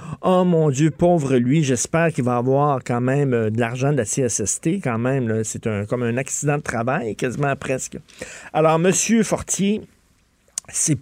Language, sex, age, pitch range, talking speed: French, male, 50-69, 115-165 Hz, 185 wpm